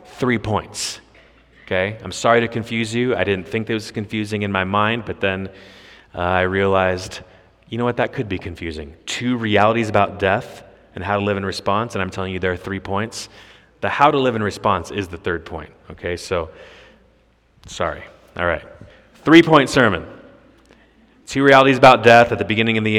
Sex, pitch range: male, 95-115 Hz